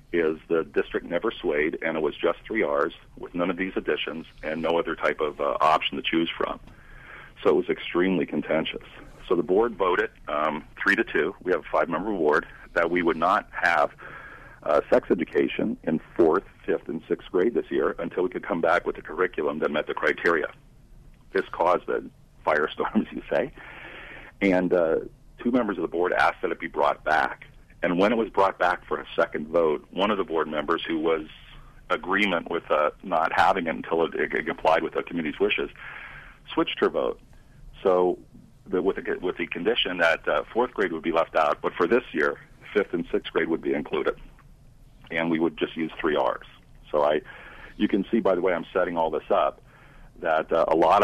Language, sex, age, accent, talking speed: English, male, 50-69, American, 205 wpm